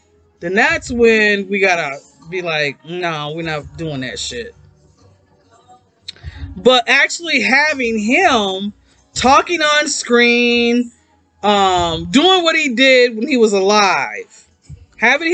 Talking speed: 115 wpm